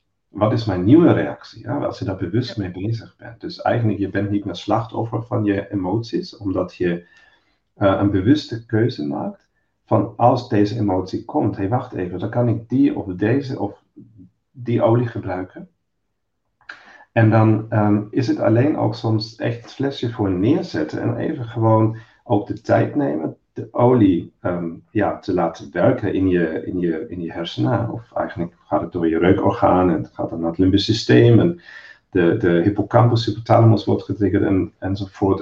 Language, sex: Dutch, male